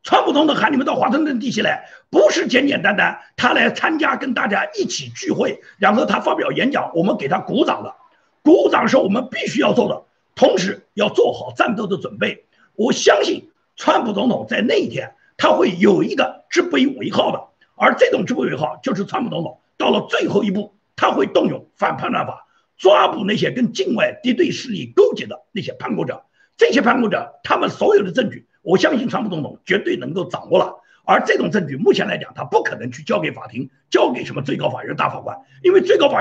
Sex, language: male, Chinese